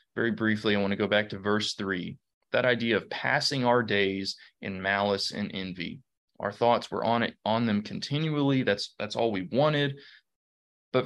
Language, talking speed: English, 185 wpm